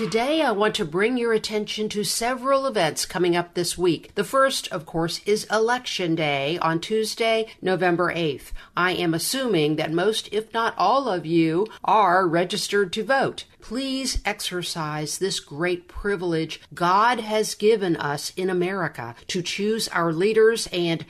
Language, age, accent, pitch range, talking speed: English, 50-69, American, 165-210 Hz, 155 wpm